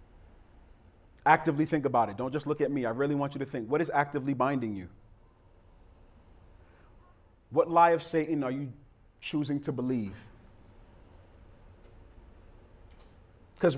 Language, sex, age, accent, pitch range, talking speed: English, male, 40-59, American, 115-170 Hz, 130 wpm